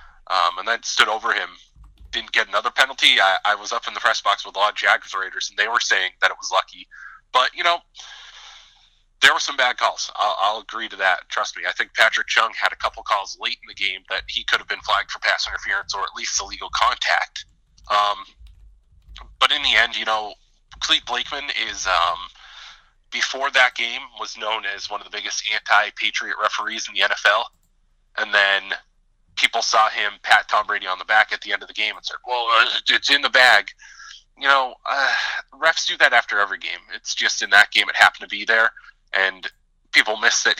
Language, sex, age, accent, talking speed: English, male, 30-49, American, 215 wpm